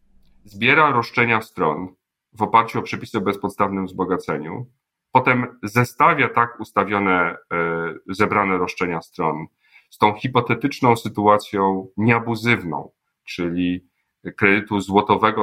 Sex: male